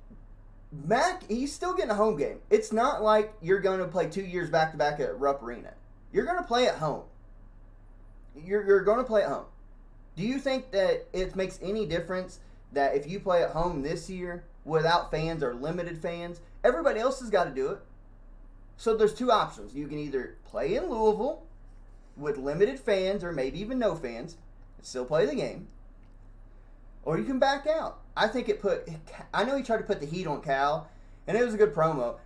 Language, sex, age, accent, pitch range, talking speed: English, male, 30-49, American, 135-210 Hz, 205 wpm